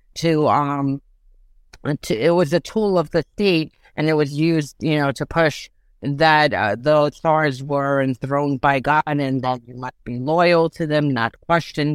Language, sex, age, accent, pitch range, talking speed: English, female, 50-69, American, 145-175 Hz, 180 wpm